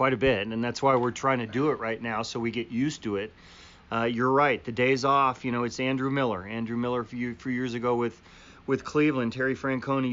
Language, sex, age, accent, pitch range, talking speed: English, male, 40-59, American, 120-135 Hz, 245 wpm